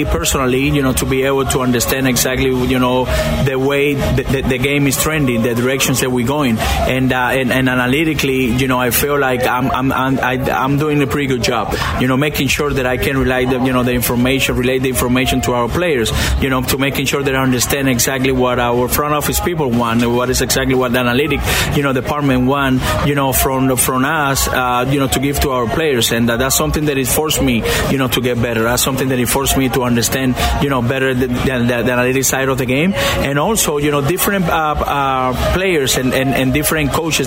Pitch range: 125-145 Hz